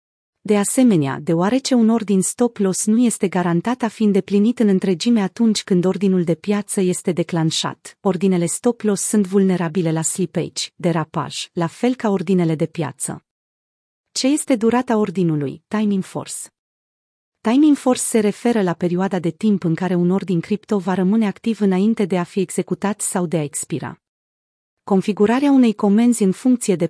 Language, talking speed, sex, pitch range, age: Romanian, 160 wpm, female, 180-220 Hz, 30-49